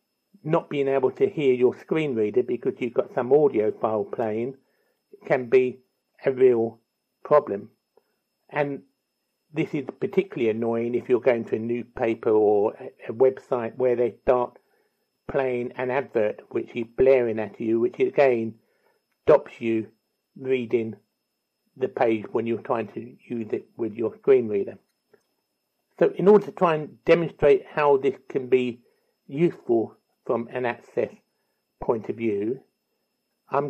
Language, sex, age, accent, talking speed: English, male, 60-79, British, 145 wpm